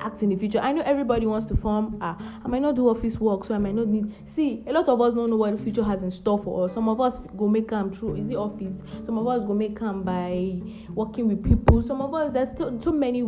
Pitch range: 185-230 Hz